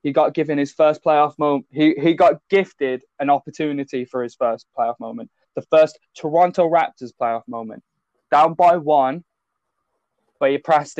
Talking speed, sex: 165 wpm, male